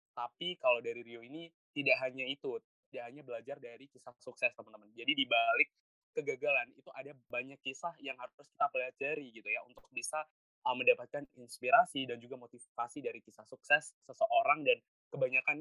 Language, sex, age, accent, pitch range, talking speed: Indonesian, male, 20-39, native, 120-165 Hz, 160 wpm